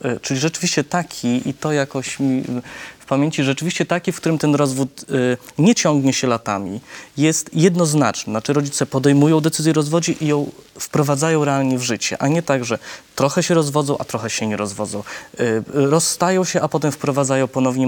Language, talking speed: Polish, 170 wpm